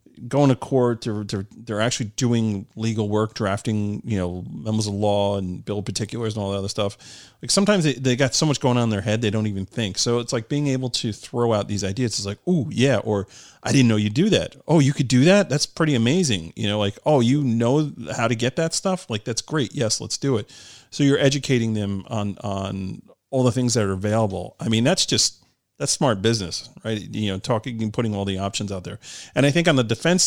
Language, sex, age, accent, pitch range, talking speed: English, male, 40-59, American, 100-130 Hz, 245 wpm